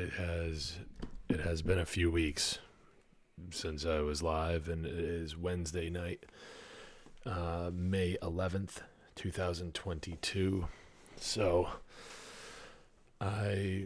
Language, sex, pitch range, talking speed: English, male, 80-90 Hz, 115 wpm